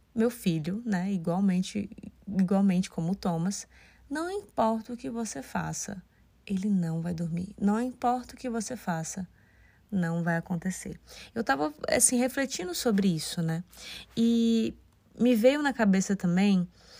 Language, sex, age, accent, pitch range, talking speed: Portuguese, female, 20-39, Brazilian, 170-205 Hz, 140 wpm